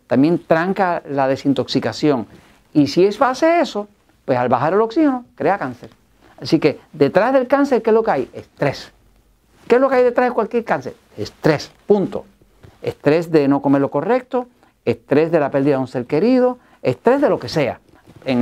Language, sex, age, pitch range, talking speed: Spanish, male, 50-69, 135-210 Hz, 190 wpm